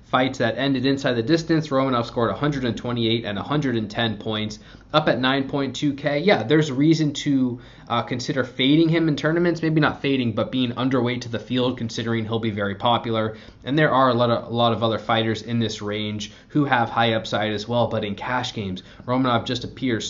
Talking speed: 190 wpm